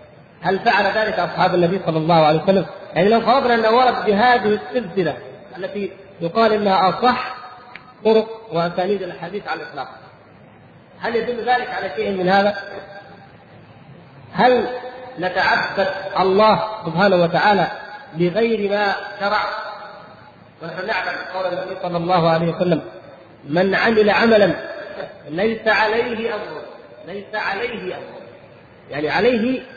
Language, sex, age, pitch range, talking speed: Arabic, male, 50-69, 180-225 Hz, 120 wpm